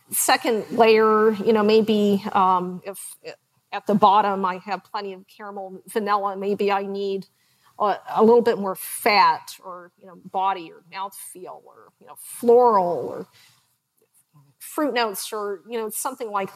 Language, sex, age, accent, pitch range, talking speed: English, female, 40-59, American, 195-225 Hz, 155 wpm